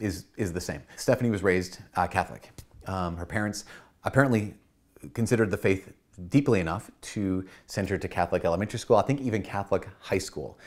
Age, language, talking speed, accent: 30-49, English, 175 wpm, American